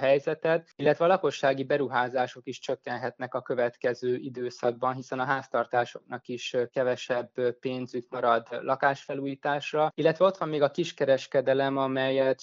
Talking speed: 125 wpm